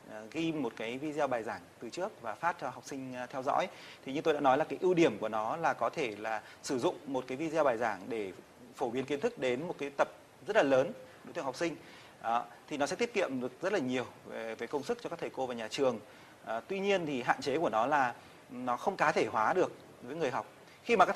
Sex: male